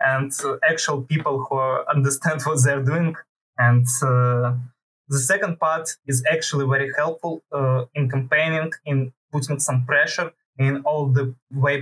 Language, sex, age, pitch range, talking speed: English, male, 20-39, 130-155 Hz, 145 wpm